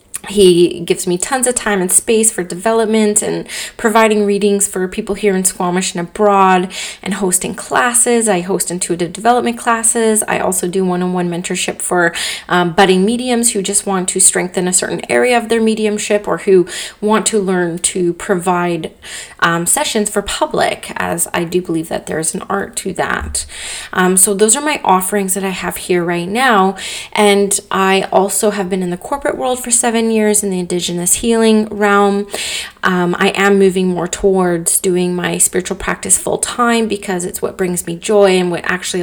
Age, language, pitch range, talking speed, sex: 20-39, English, 180-210 Hz, 185 wpm, female